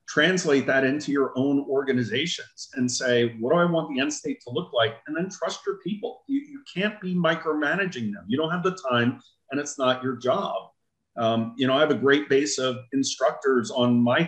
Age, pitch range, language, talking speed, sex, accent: 40-59, 130-195 Hz, English, 215 wpm, male, American